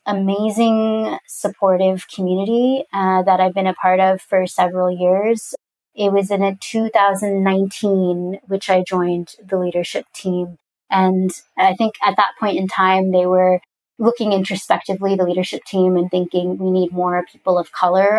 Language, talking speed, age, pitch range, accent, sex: English, 155 wpm, 20-39, 185-210 Hz, American, female